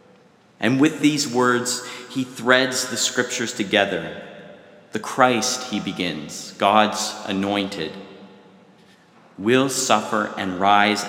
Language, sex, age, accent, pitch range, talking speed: English, male, 30-49, American, 100-120 Hz, 105 wpm